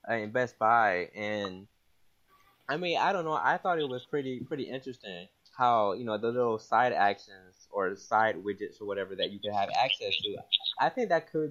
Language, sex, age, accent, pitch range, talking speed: English, male, 20-39, American, 110-145 Hz, 205 wpm